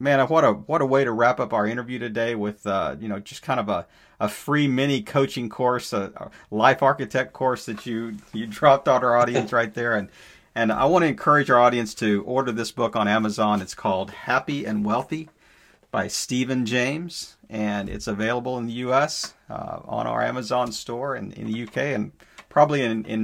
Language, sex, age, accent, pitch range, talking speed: English, male, 40-59, American, 105-130 Hz, 210 wpm